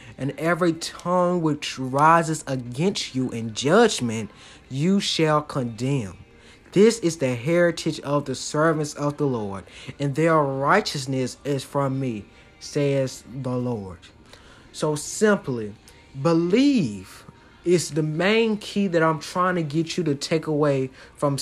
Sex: male